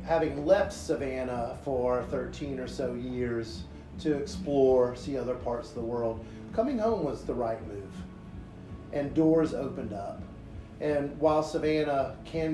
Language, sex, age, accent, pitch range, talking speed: English, male, 40-59, American, 105-145 Hz, 145 wpm